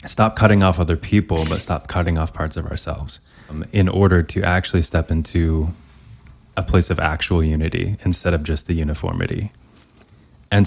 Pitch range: 85-105 Hz